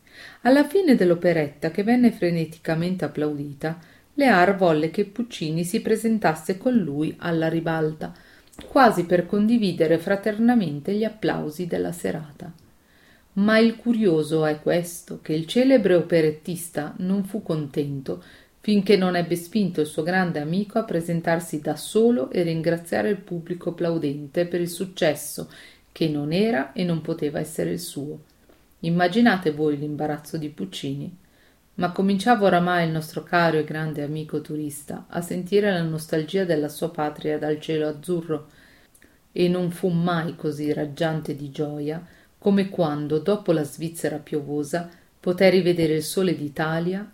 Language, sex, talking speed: Italian, female, 140 wpm